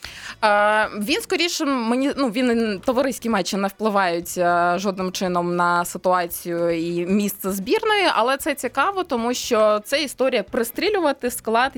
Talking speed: 125 wpm